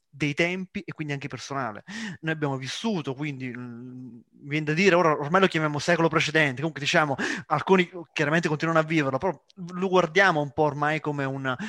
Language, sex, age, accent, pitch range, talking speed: Italian, male, 20-39, native, 140-175 Hz, 180 wpm